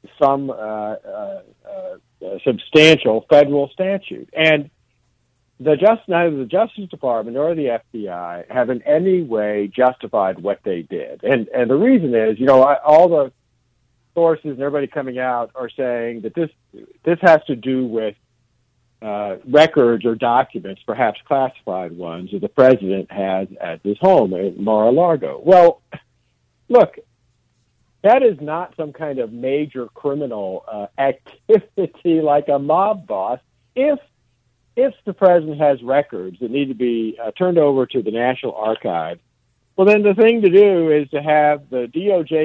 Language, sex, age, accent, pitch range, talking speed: English, male, 50-69, American, 120-185 Hz, 155 wpm